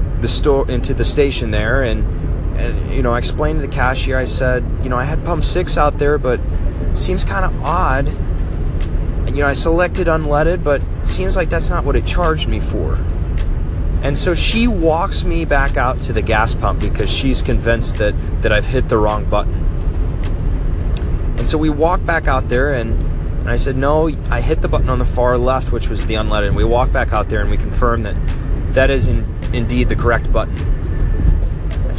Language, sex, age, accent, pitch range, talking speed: English, male, 20-39, American, 85-120 Hz, 205 wpm